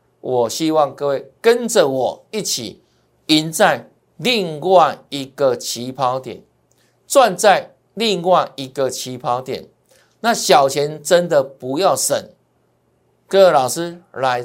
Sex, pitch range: male, 135-185 Hz